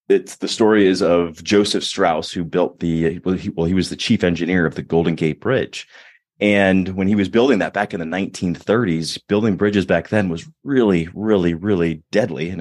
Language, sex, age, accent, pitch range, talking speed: English, male, 30-49, American, 85-105 Hz, 205 wpm